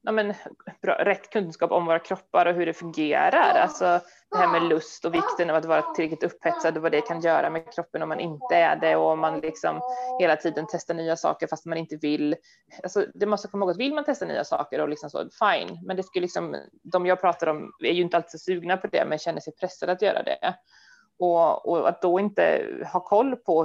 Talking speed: 235 wpm